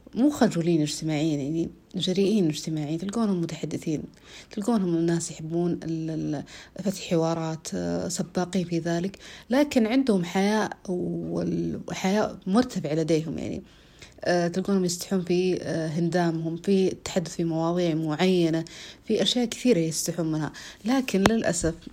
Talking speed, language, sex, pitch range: 105 wpm, Arabic, female, 160-195 Hz